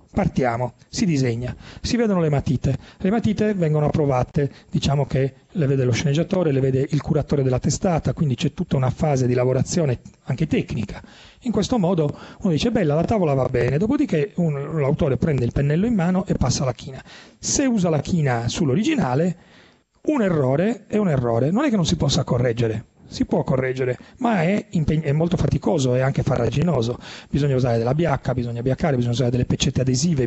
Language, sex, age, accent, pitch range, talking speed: Italian, male, 40-59, native, 130-175 Hz, 185 wpm